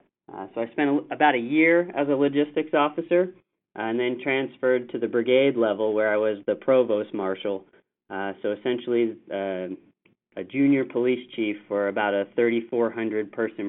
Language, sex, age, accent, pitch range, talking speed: English, male, 30-49, American, 115-140 Hz, 165 wpm